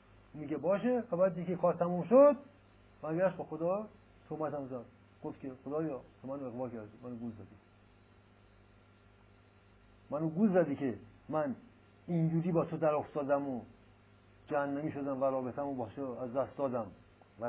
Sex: male